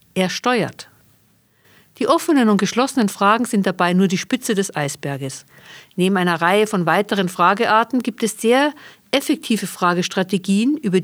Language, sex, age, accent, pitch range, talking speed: German, female, 50-69, German, 175-235 Hz, 140 wpm